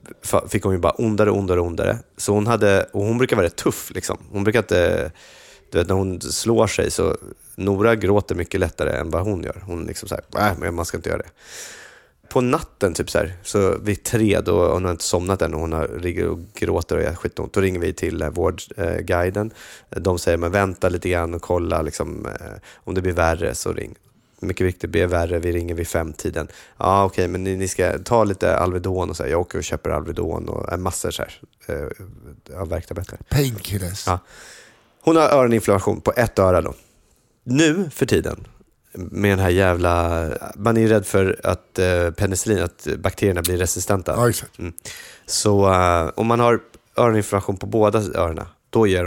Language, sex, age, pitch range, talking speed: English, male, 20-39, 90-110 Hz, 185 wpm